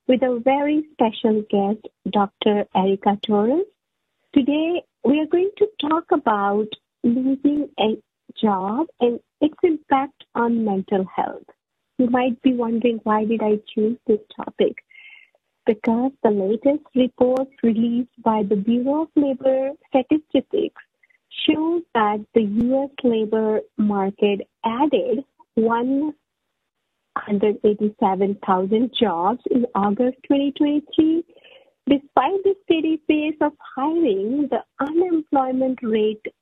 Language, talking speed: English, 110 wpm